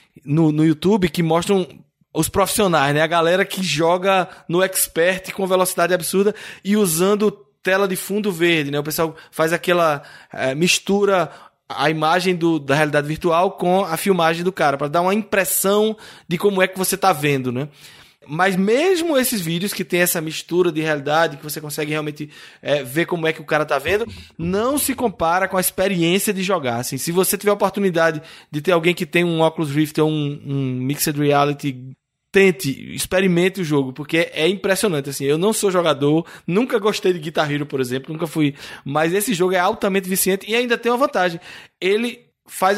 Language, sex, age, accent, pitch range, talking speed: Portuguese, male, 20-39, Brazilian, 155-195 Hz, 190 wpm